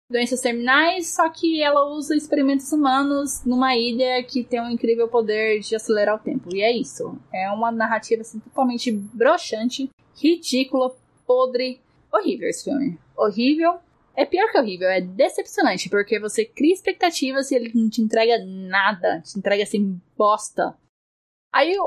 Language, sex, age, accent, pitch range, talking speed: Portuguese, female, 10-29, Brazilian, 220-280 Hz, 150 wpm